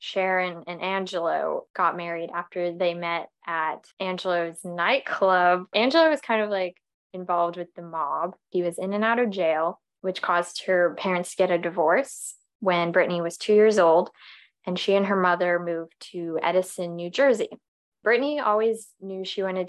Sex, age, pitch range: female, 20-39, 175-215 Hz